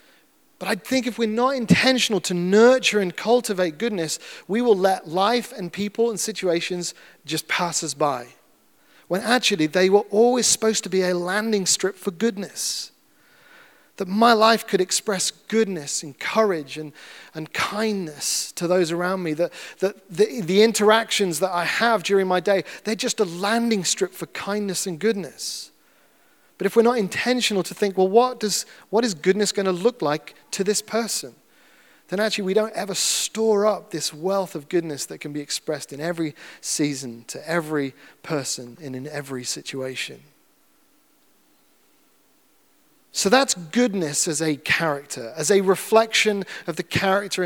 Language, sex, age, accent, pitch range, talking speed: English, male, 30-49, British, 160-220 Hz, 160 wpm